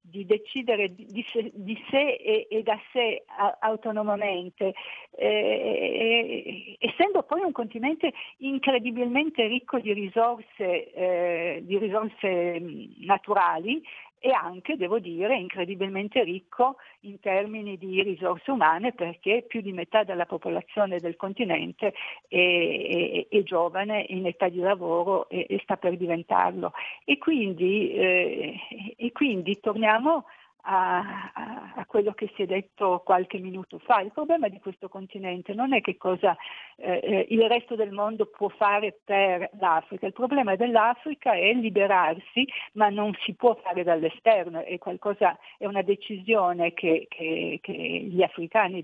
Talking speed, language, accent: 130 wpm, Italian, native